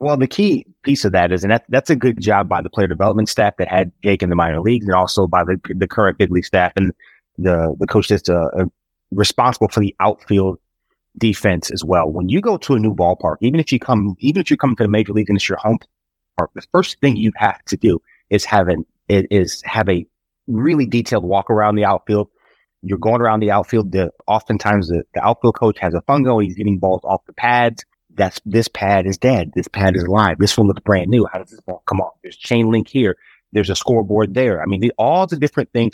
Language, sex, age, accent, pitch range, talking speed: English, male, 30-49, American, 95-115 Hz, 245 wpm